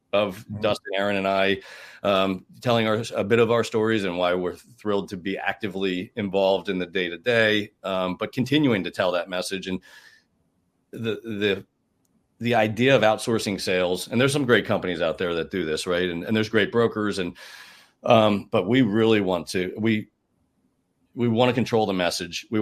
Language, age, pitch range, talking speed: English, 40-59, 95-115 Hz, 190 wpm